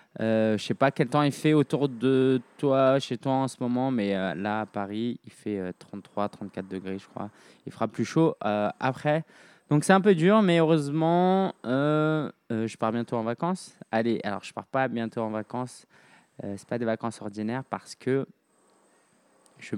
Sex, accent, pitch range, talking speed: male, French, 105-135 Hz, 205 wpm